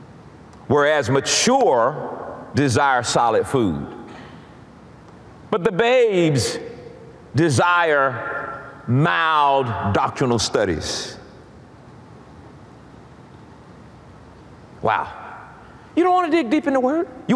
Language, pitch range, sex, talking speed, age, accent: English, 175-240 Hz, male, 80 wpm, 50-69, American